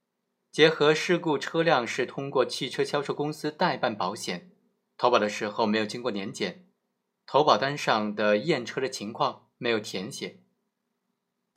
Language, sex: Chinese, male